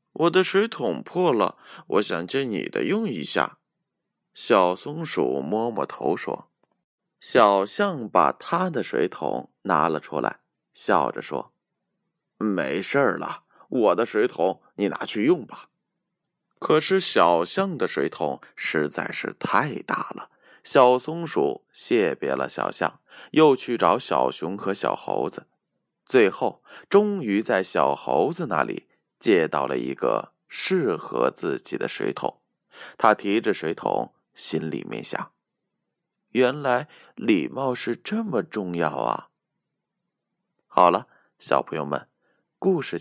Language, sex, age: Chinese, male, 20-39